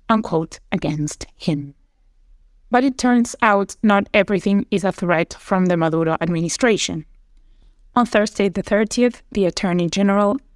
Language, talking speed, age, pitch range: English, 130 wpm, 20-39, 175-210 Hz